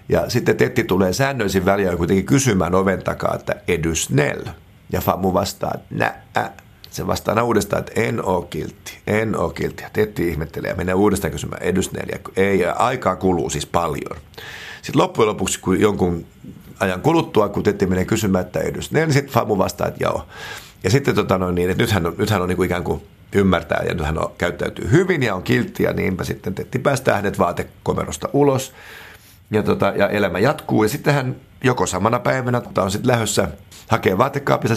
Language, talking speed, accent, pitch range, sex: Finnish, 180 wpm, native, 90-115 Hz, male